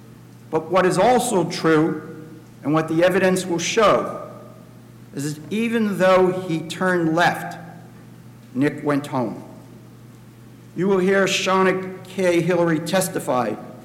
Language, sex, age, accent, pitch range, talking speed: English, male, 60-79, American, 135-180 Hz, 120 wpm